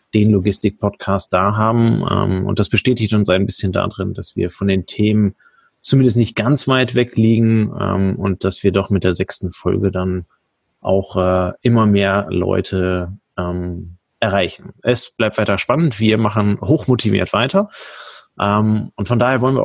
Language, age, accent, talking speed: German, 30-49, German, 150 wpm